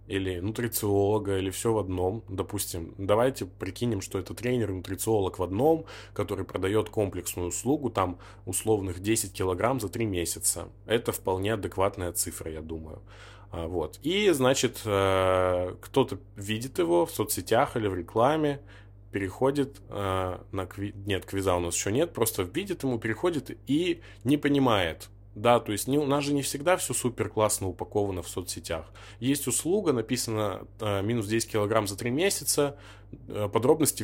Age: 20-39